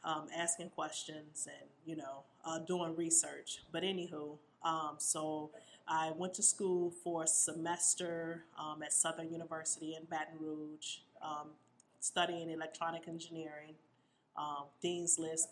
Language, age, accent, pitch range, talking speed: English, 30-49, American, 160-180 Hz, 130 wpm